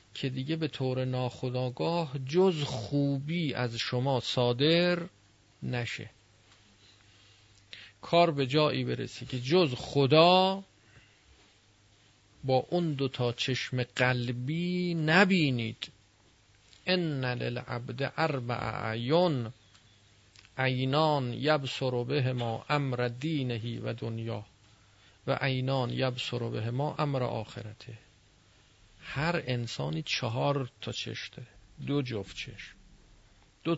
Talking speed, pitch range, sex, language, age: 95 wpm, 105-140 Hz, male, Persian, 40-59